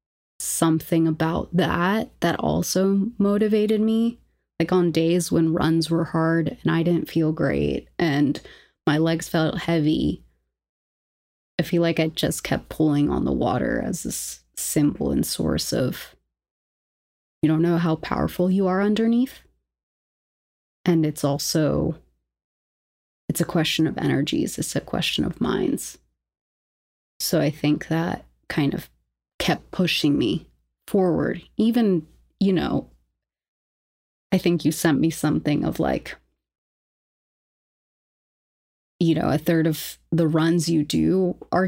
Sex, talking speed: female, 130 wpm